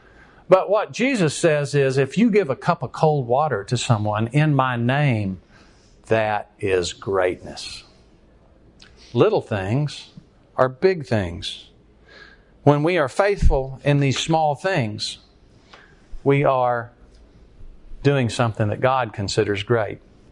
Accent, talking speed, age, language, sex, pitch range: American, 125 wpm, 50-69, English, male, 120-170 Hz